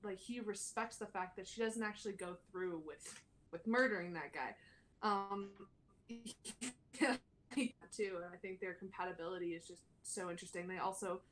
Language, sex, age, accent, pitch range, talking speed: English, female, 20-39, American, 185-215 Hz, 160 wpm